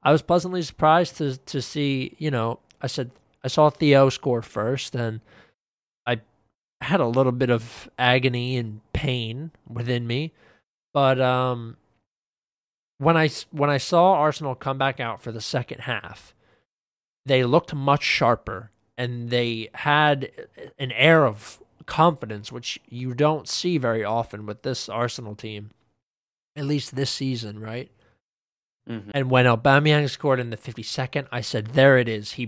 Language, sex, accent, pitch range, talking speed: English, male, American, 115-150 Hz, 150 wpm